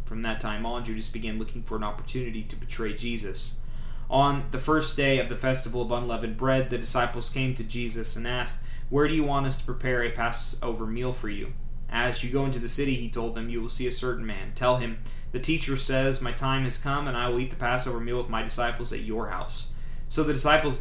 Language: English